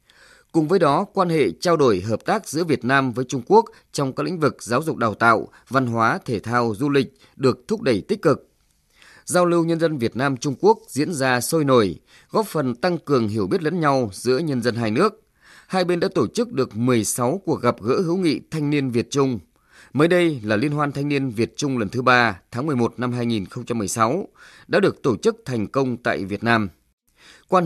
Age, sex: 20-39, male